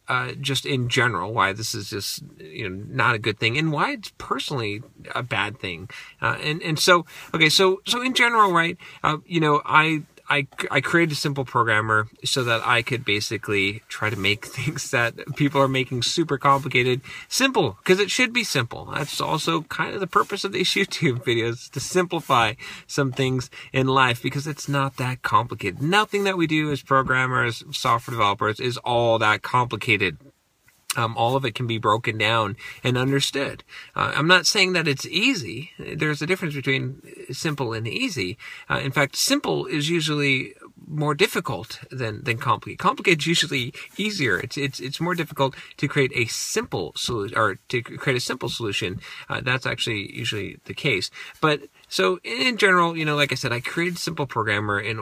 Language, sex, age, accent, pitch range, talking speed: English, male, 30-49, American, 115-160 Hz, 185 wpm